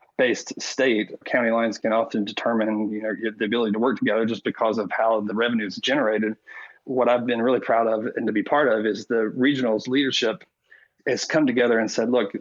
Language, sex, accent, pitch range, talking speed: English, male, American, 110-125 Hz, 210 wpm